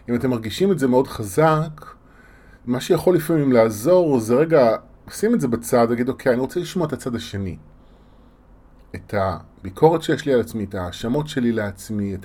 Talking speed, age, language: 175 wpm, 30-49, Hebrew